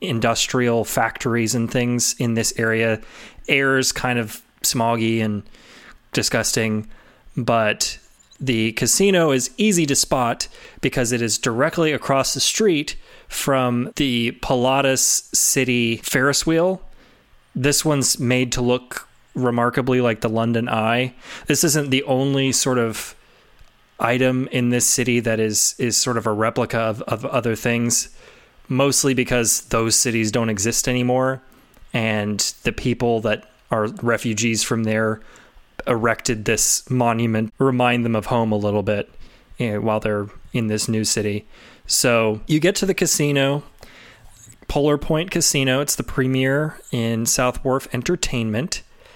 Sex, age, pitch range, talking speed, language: male, 20-39, 115-135 Hz, 135 wpm, English